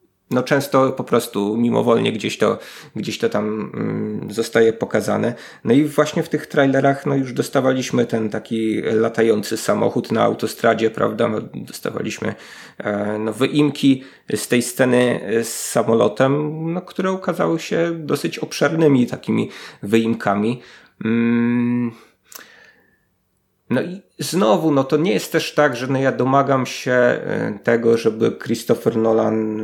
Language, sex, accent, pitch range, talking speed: Polish, male, native, 115-145 Hz, 135 wpm